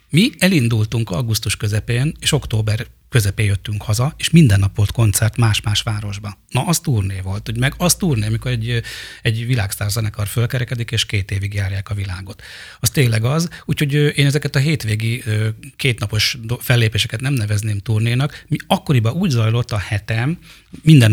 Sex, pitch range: male, 105-125 Hz